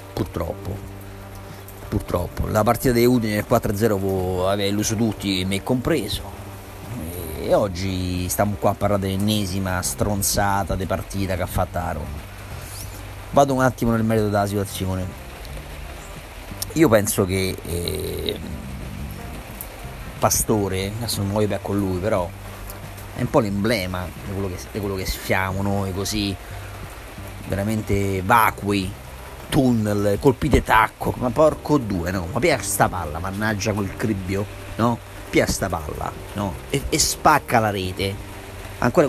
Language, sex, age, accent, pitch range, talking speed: Italian, male, 30-49, native, 95-115 Hz, 135 wpm